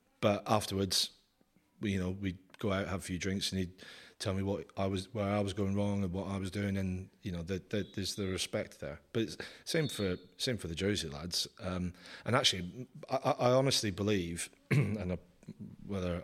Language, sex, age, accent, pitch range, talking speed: English, male, 30-49, British, 90-105 Hz, 210 wpm